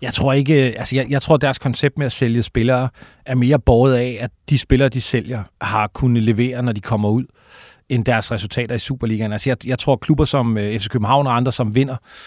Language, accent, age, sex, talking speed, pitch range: Danish, native, 40-59, male, 225 wpm, 120-145 Hz